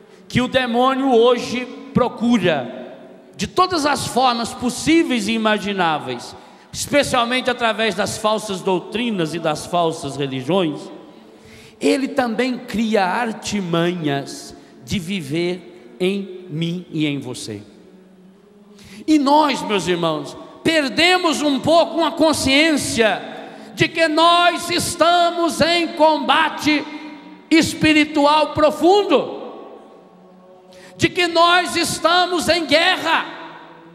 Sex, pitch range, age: male, 190-305 Hz, 50-69